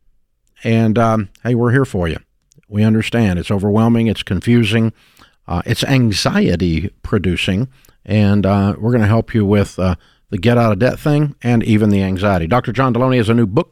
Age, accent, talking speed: 50-69, American, 170 wpm